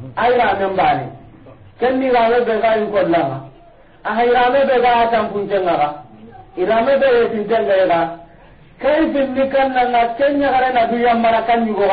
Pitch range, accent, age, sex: 170-245 Hz, Indian, 50-69, male